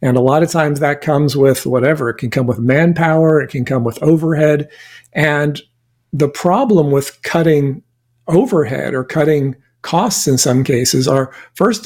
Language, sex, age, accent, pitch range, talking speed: English, male, 50-69, American, 135-165 Hz, 165 wpm